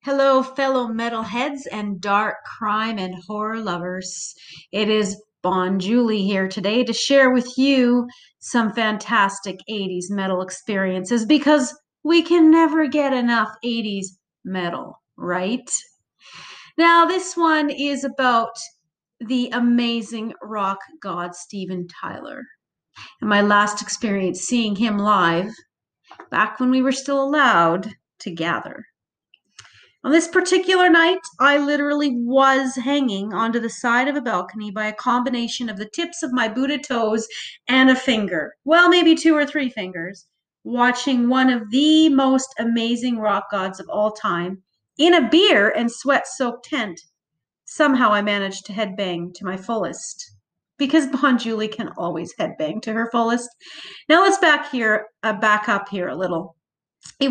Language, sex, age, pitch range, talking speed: English, female, 40-59, 200-275 Hz, 145 wpm